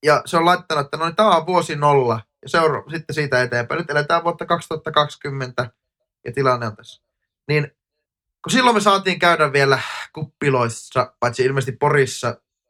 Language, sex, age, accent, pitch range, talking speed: Finnish, male, 20-39, native, 120-170 Hz, 155 wpm